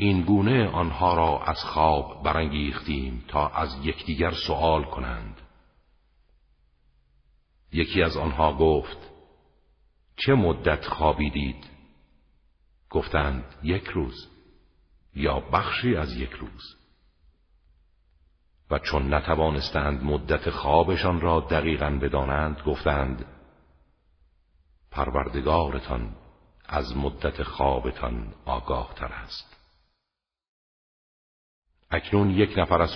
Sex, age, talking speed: male, 50-69, 85 wpm